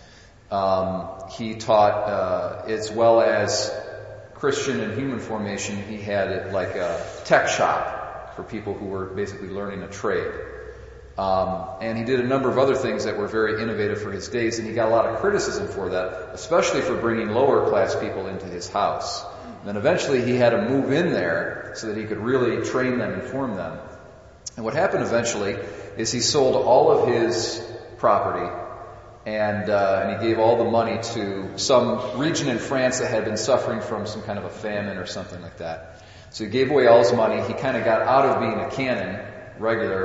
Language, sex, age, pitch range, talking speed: English, male, 40-59, 100-120 Hz, 200 wpm